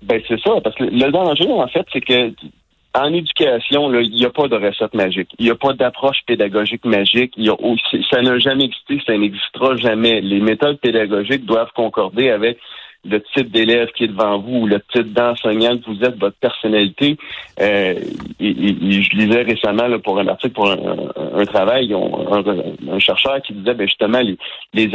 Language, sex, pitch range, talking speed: French, male, 110-140 Hz, 195 wpm